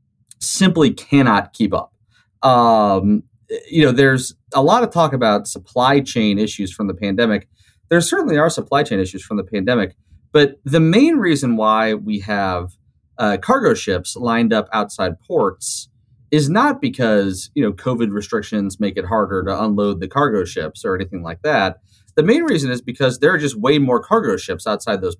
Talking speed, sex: 180 wpm, male